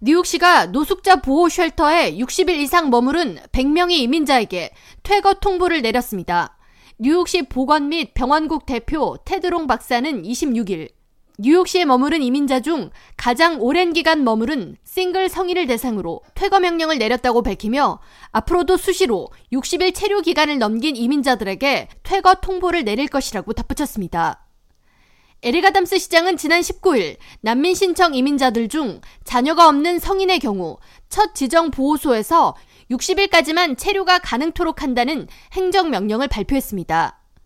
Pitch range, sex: 250-350 Hz, female